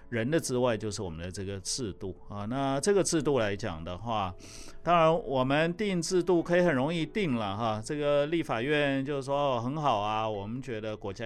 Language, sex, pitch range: Chinese, male, 95-125 Hz